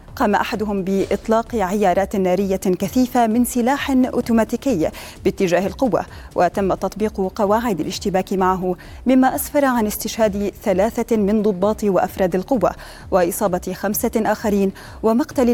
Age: 30-49